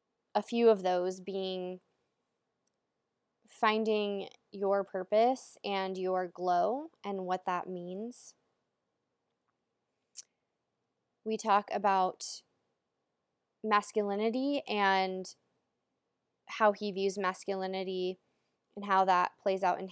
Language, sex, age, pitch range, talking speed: English, female, 20-39, 185-215 Hz, 90 wpm